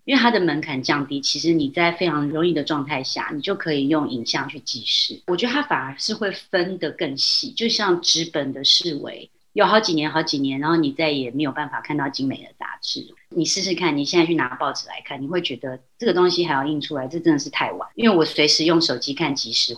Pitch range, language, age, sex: 145-190 Hz, Chinese, 30-49, female